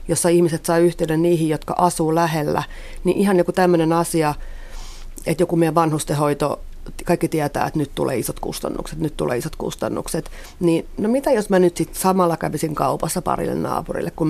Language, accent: Finnish, native